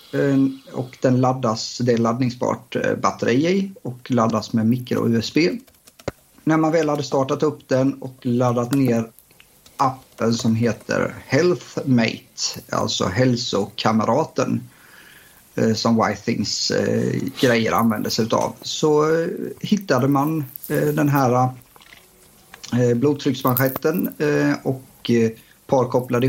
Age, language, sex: 50-69, Swedish, male